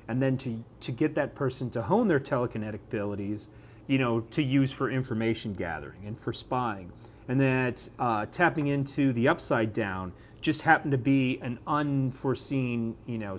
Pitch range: 115-145 Hz